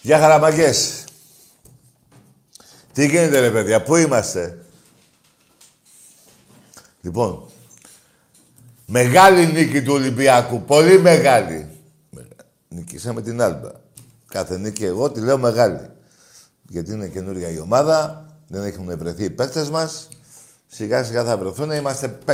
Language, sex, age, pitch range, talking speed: Greek, male, 60-79, 100-155 Hz, 105 wpm